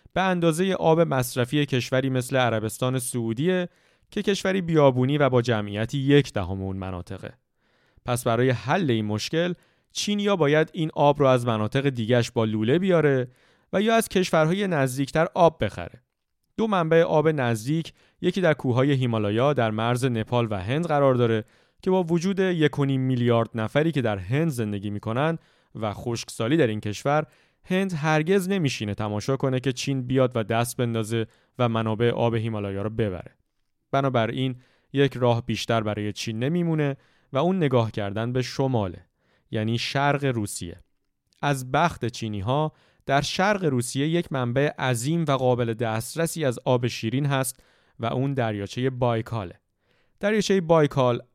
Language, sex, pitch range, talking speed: Persian, male, 115-155 Hz, 150 wpm